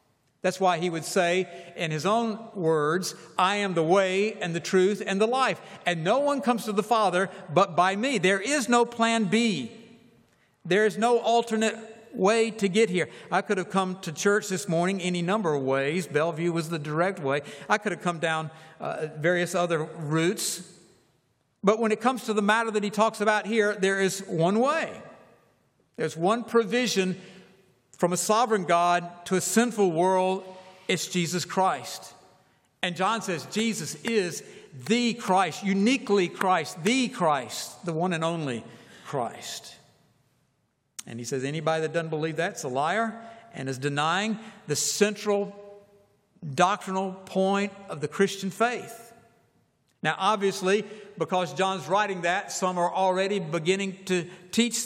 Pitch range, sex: 175-215 Hz, male